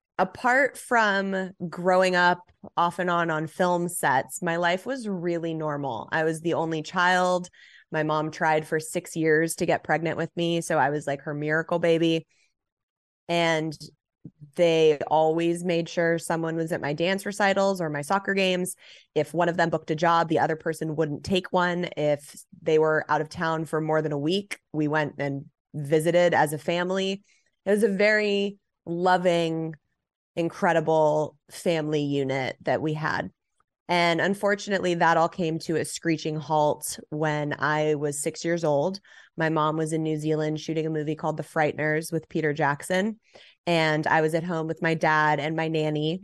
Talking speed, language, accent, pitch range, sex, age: 175 wpm, English, American, 155-175 Hz, female, 20-39